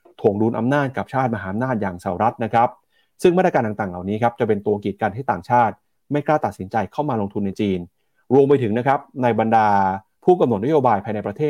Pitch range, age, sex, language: 105-140 Hz, 30-49, male, Thai